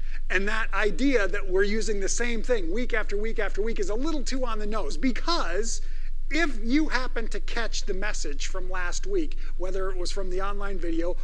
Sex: male